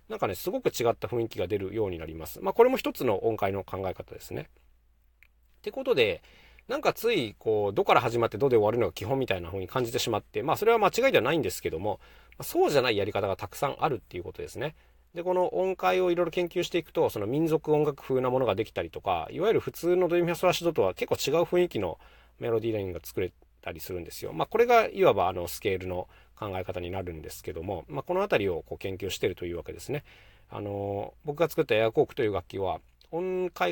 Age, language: 40-59, Japanese